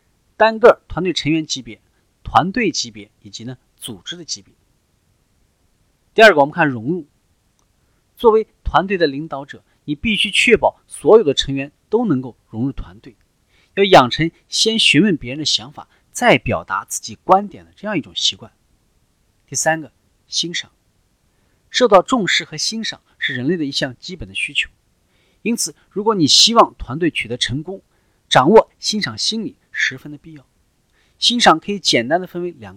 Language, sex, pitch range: Chinese, male, 120-185 Hz